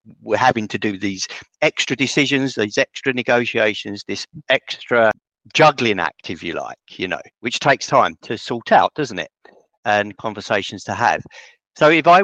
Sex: male